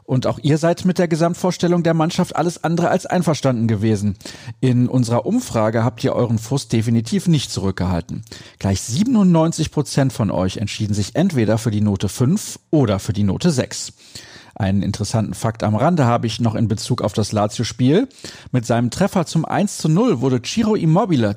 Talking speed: 170 wpm